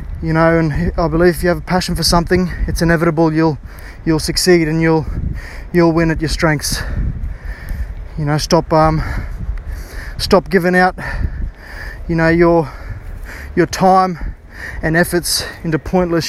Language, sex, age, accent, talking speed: English, male, 20-39, Australian, 145 wpm